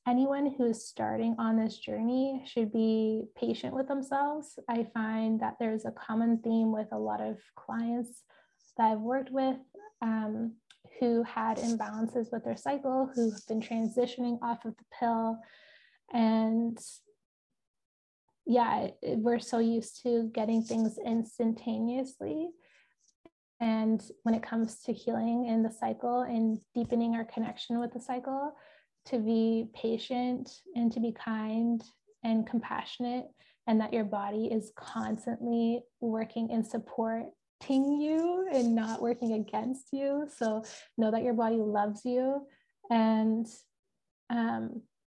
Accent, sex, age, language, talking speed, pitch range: American, female, 20-39, English, 135 wpm, 225-250 Hz